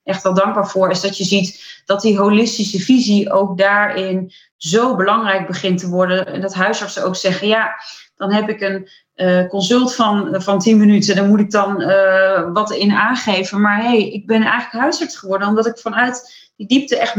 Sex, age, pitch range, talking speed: female, 30-49, 190-225 Hz, 205 wpm